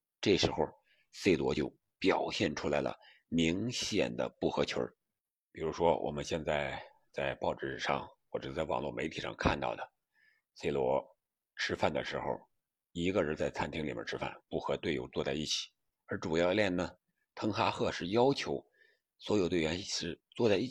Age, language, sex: 60-79, Chinese, male